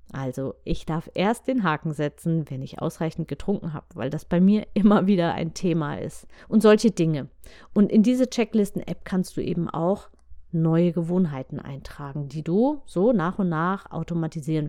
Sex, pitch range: female, 155-205 Hz